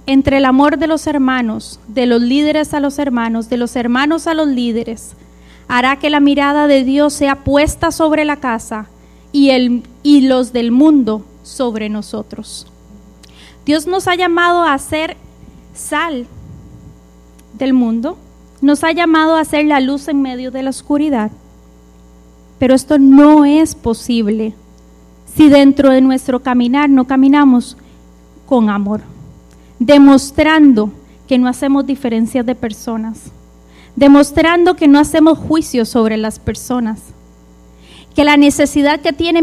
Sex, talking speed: female, 140 wpm